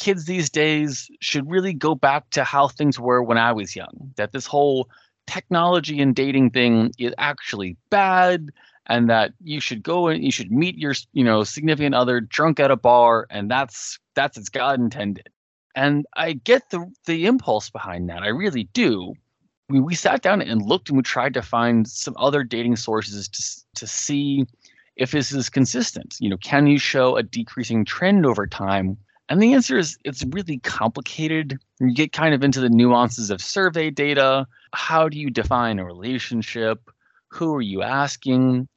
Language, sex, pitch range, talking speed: English, male, 115-155 Hz, 185 wpm